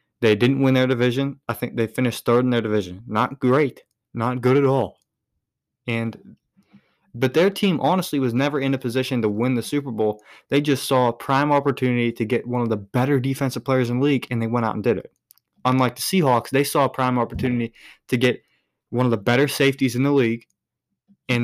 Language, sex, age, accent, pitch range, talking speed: English, male, 20-39, American, 115-140 Hz, 215 wpm